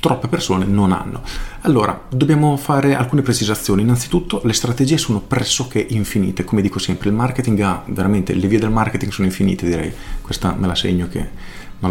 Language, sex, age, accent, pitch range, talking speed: Italian, male, 40-59, native, 100-125 Hz, 175 wpm